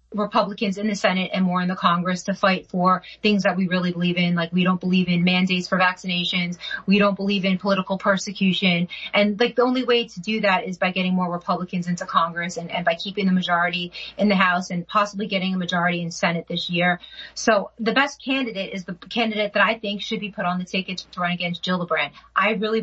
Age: 30-49